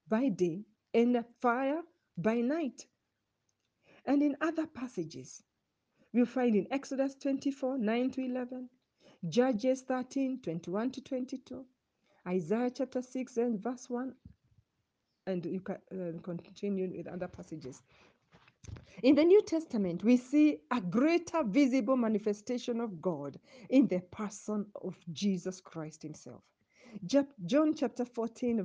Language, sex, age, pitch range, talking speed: English, female, 50-69, 195-275 Hz, 125 wpm